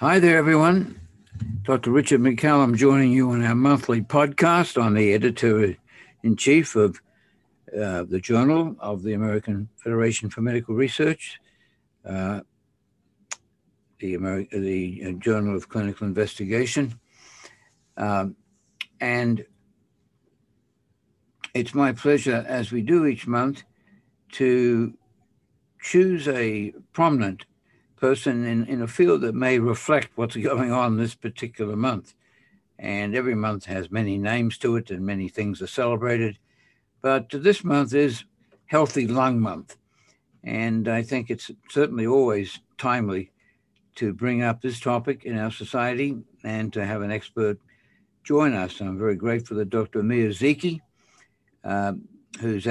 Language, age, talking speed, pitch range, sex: English, 60-79, 130 wpm, 105-130 Hz, male